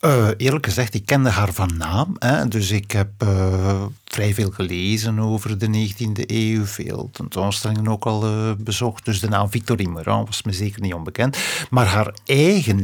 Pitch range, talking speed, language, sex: 105-140 Hz, 180 wpm, Dutch, male